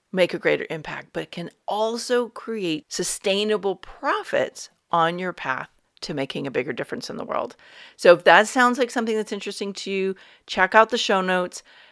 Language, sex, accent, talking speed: English, female, American, 180 wpm